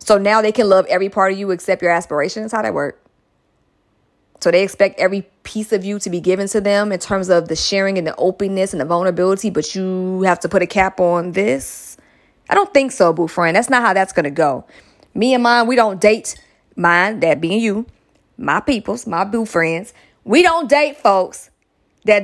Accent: American